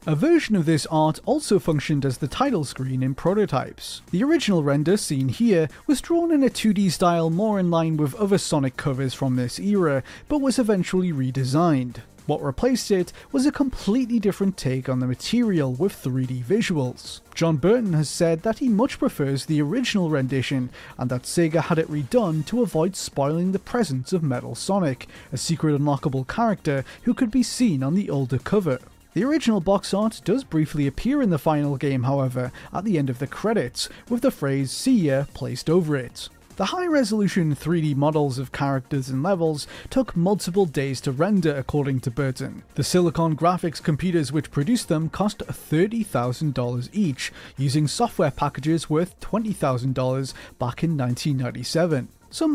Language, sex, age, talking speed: English, male, 30-49, 170 wpm